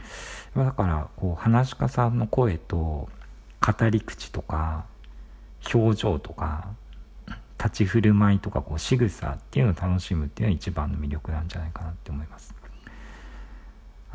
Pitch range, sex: 80-115 Hz, male